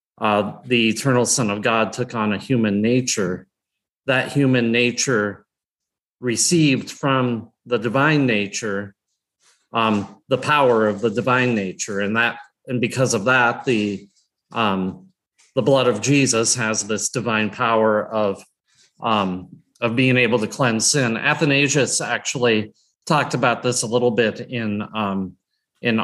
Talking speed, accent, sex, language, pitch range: 140 wpm, American, male, English, 105-125 Hz